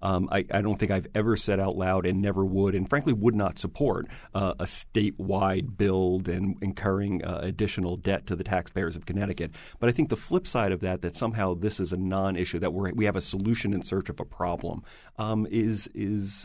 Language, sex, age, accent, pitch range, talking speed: English, male, 40-59, American, 95-110 Hz, 220 wpm